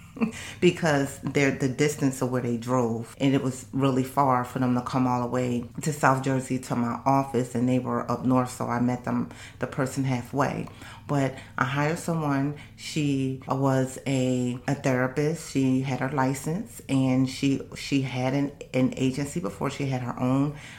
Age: 30-49